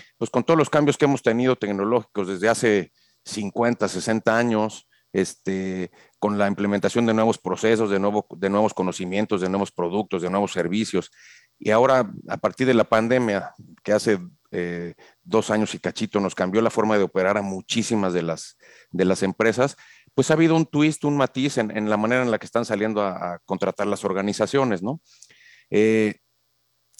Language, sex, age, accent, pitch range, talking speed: Spanish, male, 40-59, Mexican, 95-120 Hz, 180 wpm